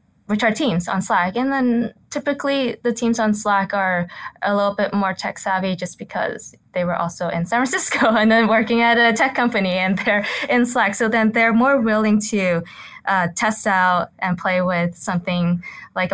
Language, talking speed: English, 195 wpm